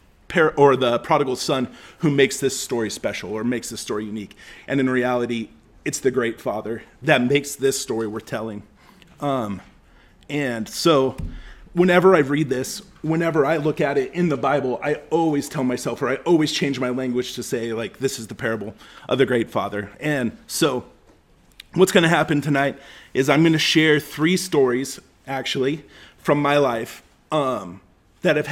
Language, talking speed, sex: English, 175 wpm, male